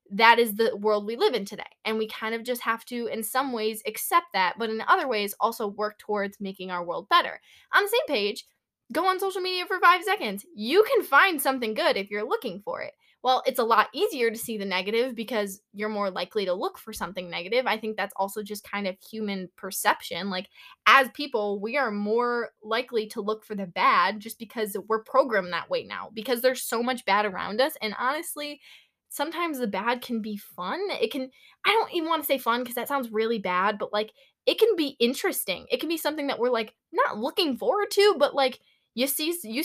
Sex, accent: female, American